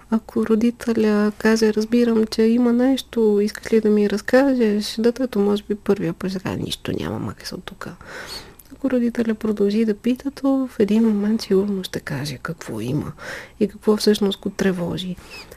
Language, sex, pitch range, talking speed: Bulgarian, female, 200-235 Hz, 160 wpm